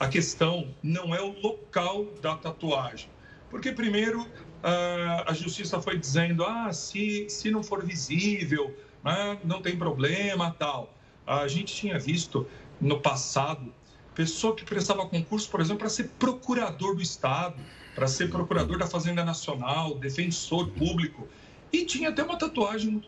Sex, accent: male, Brazilian